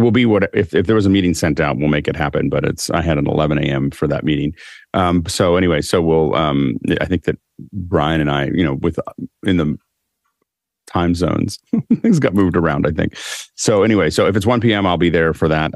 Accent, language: American, English